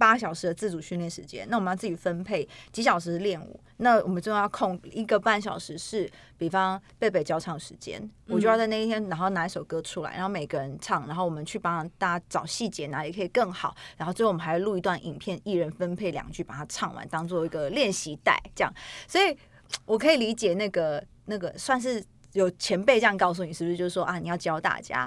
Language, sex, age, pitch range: Chinese, female, 20-39, 175-230 Hz